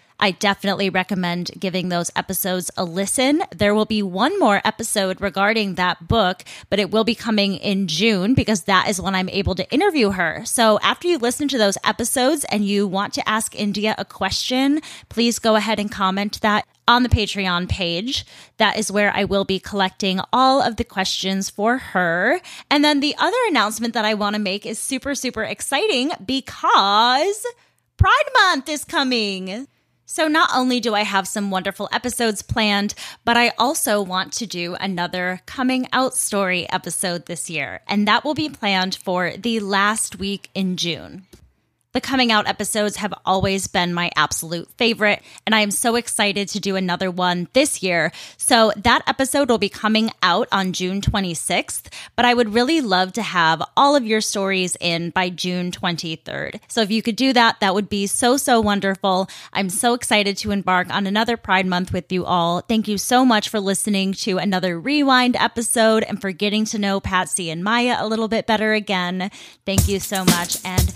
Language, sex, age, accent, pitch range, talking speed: English, female, 20-39, American, 185-235 Hz, 185 wpm